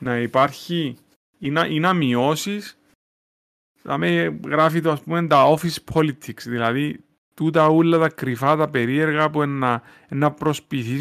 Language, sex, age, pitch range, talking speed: Greek, male, 30-49, 135-195 Hz, 135 wpm